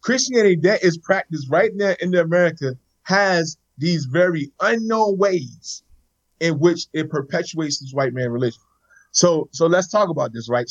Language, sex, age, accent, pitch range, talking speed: English, male, 20-39, American, 125-170 Hz, 155 wpm